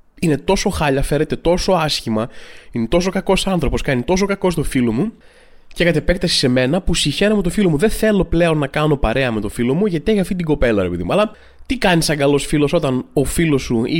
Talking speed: 240 wpm